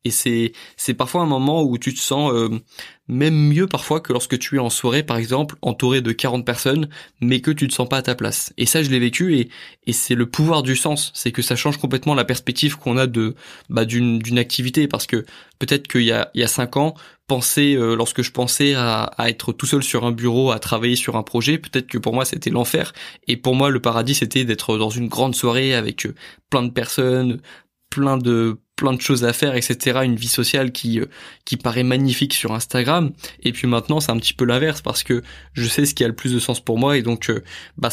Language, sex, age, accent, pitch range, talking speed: French, male, 20-39, French, 120-140 Hz, 240 wpm